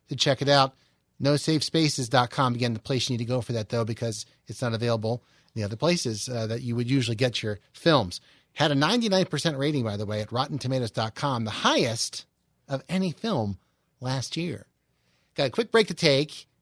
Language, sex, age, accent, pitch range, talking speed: English, male, 40-59, American, 125-175 Hz, 190 wpm